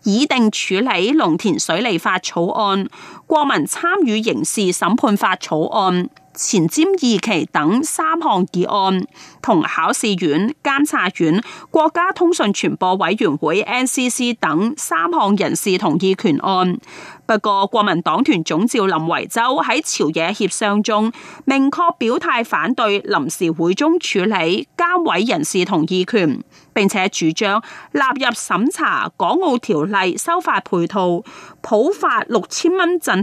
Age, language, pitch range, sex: 30-49, Chinese, 185-285 Hz, female